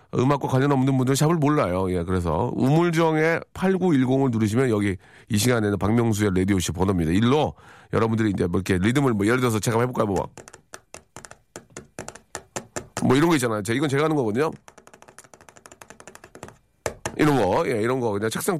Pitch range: 110-160 Hz